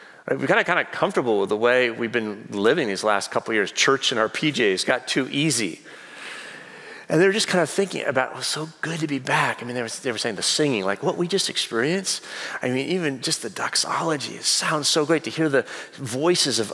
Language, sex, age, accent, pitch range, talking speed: English, male, 40-59, American, 130-170 Hz, 245 wpm